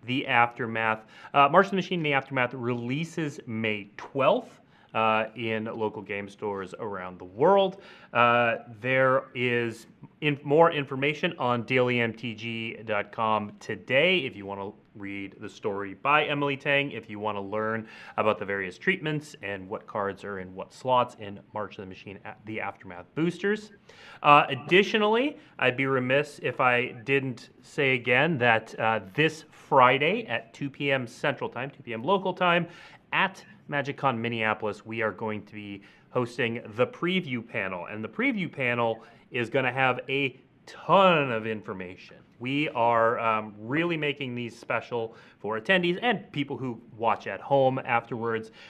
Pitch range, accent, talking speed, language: 110-145 Hz, American, 155 wpm, English